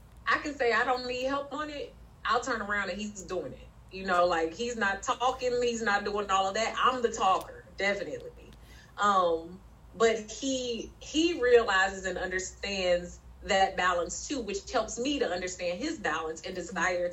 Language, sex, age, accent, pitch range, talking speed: English, female, 30-49, American, 175-240 Hz, 180 wpm